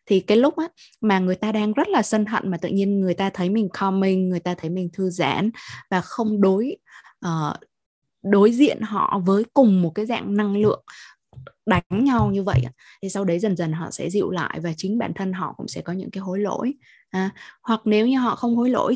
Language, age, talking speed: Vietnamese, 20-39, 220 wpm